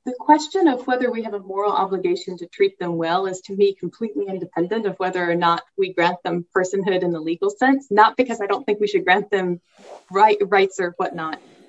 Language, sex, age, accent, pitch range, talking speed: English, female, 20-39, American, 175-245 Hz, 215 wpm